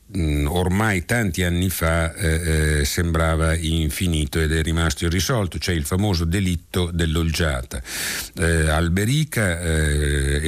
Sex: male